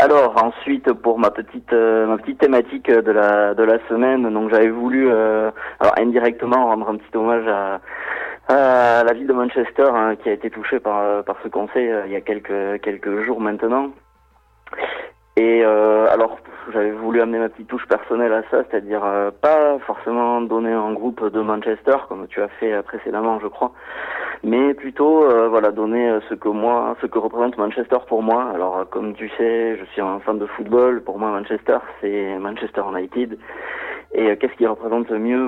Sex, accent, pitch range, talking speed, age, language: male, French, 105-120 Hz, 180 wpm, 30-49, French